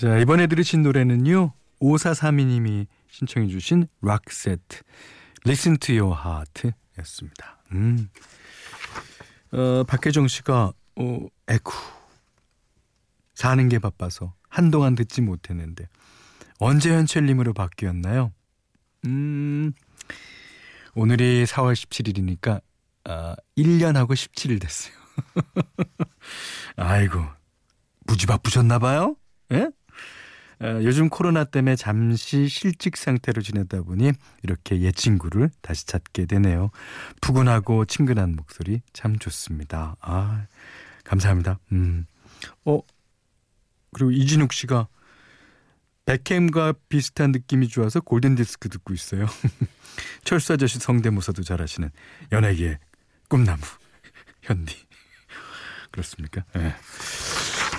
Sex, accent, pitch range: male, native, 95-135 Hz